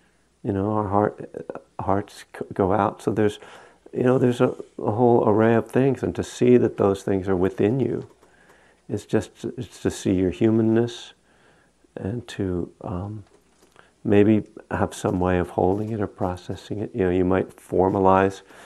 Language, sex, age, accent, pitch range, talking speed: English, male, 50-69, American, 90-105 Hz, 160 wpm